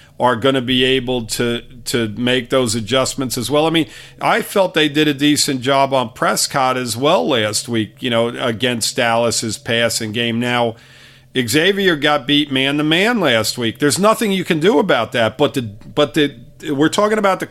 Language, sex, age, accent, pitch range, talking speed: English, male, 50-69, American, 125-160 Hz, 190 wpm